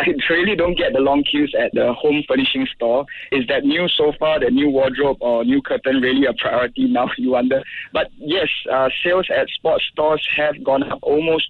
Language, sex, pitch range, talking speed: English, male, 135-185 Hz, 205 wpm